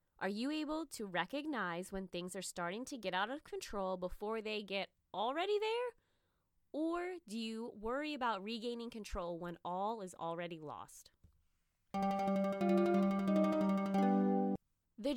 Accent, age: American, 20-39